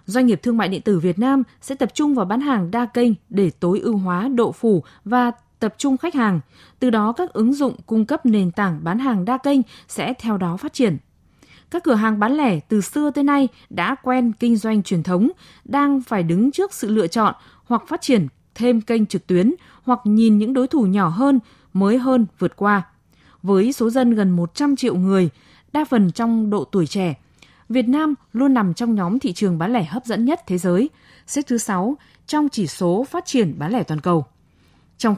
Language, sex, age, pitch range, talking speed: Vietnamese, female, 20-39, 195-260 Hz, 215 wpm